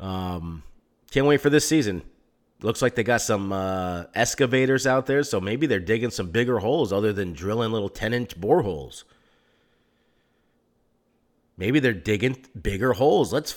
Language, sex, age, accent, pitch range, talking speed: English, male, 30-49, American, 105-135 Hz, 155 wpm